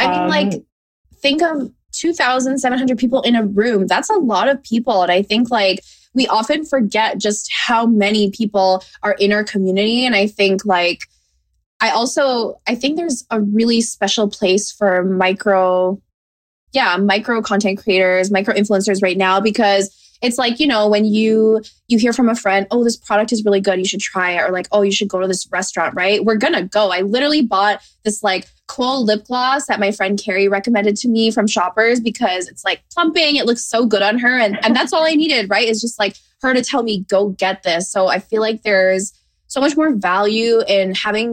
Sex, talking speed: female, 210 wpm